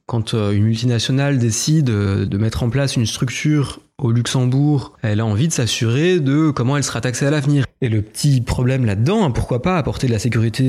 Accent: French